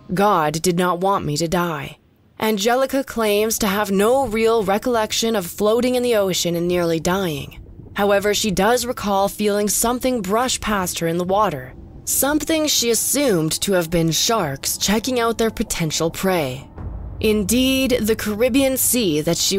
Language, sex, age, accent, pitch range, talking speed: English, female, 20-39, American, 175-230 Hz, 160 wpm